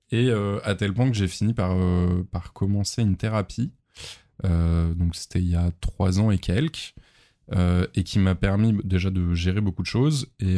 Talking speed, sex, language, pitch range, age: 200 wpm, male, French, 90-110 Hz, 20-39